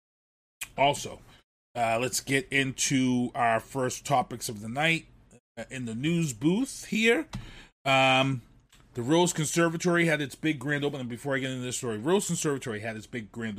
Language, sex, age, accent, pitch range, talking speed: English, male, 30-49, American, 115-145 Hz, 165 wpm